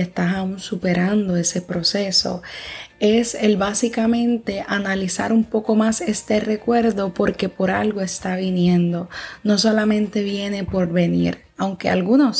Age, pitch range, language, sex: 20-39, 190-225 Hz, Spanish, female